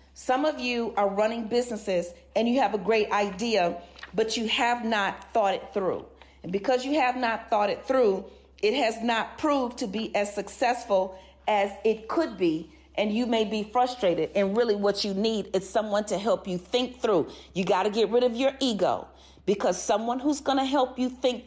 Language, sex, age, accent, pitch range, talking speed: English, female, 40-59, American, 200-255 Hz, 200 wpm